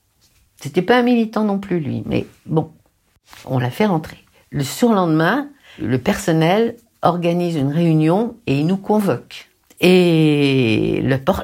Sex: female